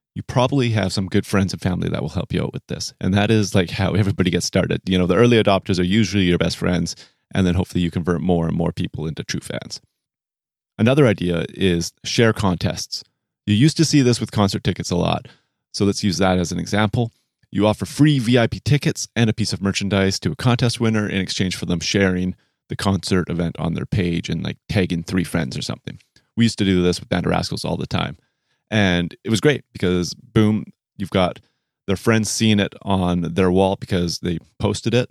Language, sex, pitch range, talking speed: English, male, 90-110 Hz, 220 wpm